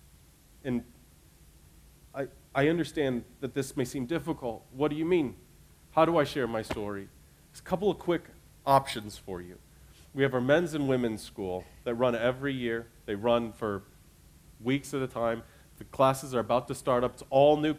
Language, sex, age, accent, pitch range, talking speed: English, male, 40-59, American, 115-140 Hz, 185 wpm